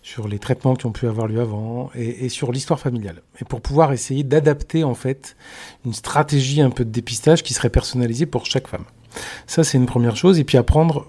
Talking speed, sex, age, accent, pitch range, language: 220 wpm, male, 40-59, French, 115-145 Hz, French